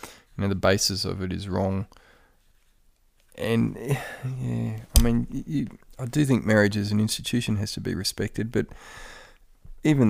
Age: 20-39